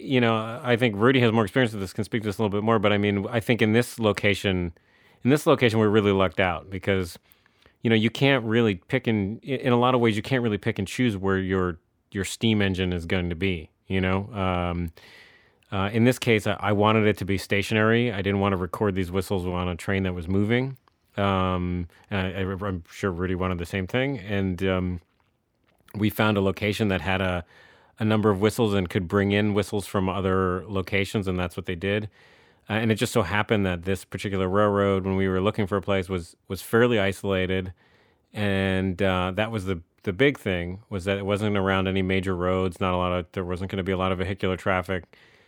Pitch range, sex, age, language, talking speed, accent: 95-110 Hz, male, 30-49, English, 230 wpm, American